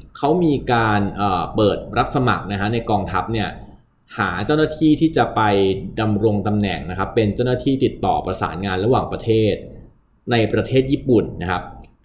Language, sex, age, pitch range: Thai, male, 20-39, 100-130 Hz